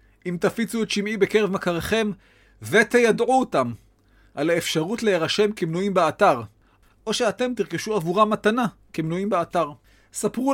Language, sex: Hebrew, male